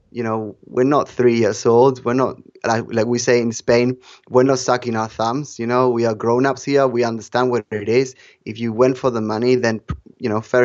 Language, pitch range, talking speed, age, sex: English, 115-130 Hz, 230 wpm, 20-39, male